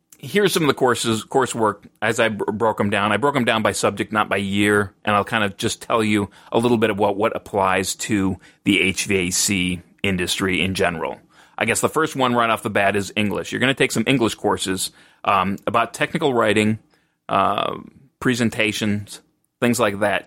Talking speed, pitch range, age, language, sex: 200 wpm, 100-120 Hz, 30-49, English, male